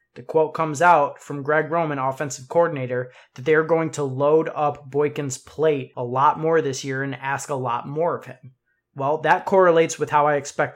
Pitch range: 130-150 Hz